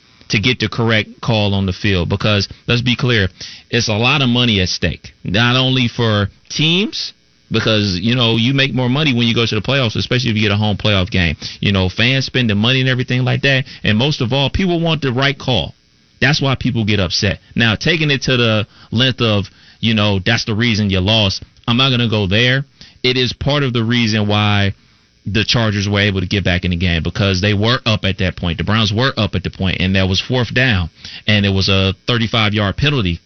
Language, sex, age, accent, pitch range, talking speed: English, male, 30-49, American, 100-125 Hz, 235 wpm